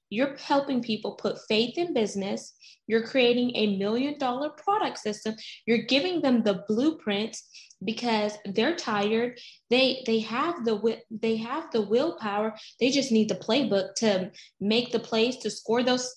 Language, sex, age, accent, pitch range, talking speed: English, female, 20-39, American, 200-250 Hz, 155 wpm